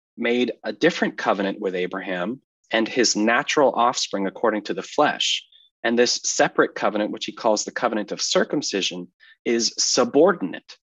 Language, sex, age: English, male, 30-49